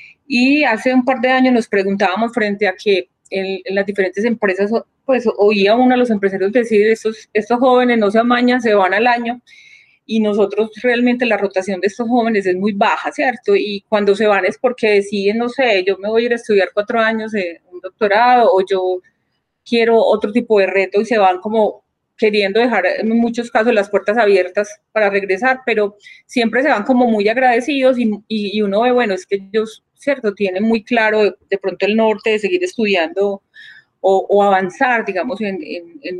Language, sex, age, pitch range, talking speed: Spanish, female, 30-49, 200-245 Hz, 200 wpm